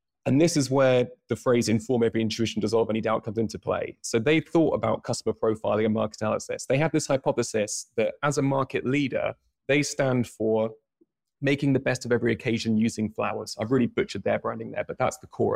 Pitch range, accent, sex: 115-150 Hz, British, male